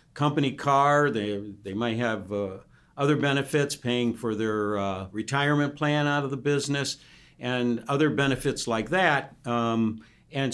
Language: English